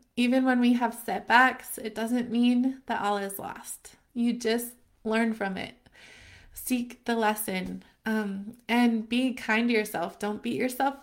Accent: American